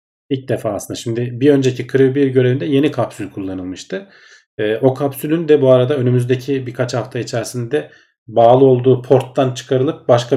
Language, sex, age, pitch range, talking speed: Turkish, male, 40-59, 110-130 Hz, 150 wpm